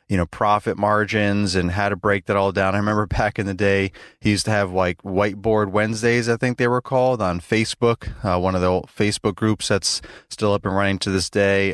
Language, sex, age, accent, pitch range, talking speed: English, male, 30-49, American, 95-110 Hz, 235 wpm